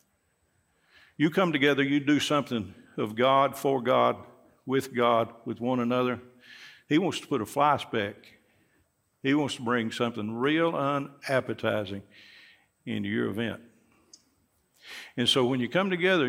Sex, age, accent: male, 50-69, American